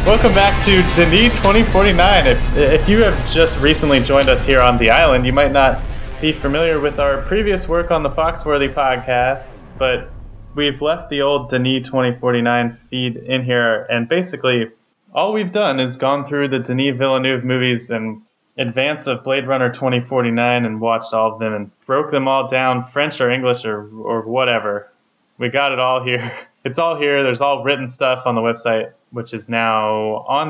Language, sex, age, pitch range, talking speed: English, male, 20-39, 115-140 Hz, 185 wpm